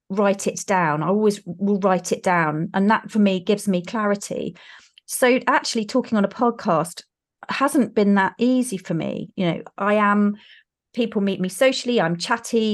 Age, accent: 30-49, British